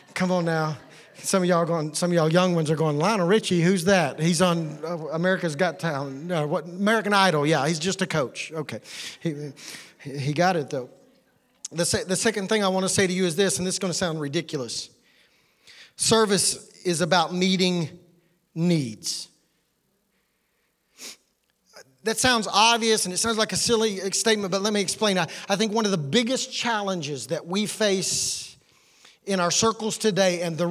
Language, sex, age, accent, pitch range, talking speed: English, male, 40-59, American, 170-210 Hz, 185 wpm